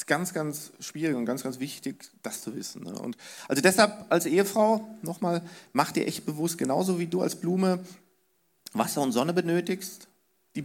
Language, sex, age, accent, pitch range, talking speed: German, male, 40-59, German, 130-190 Hz, 175 wpm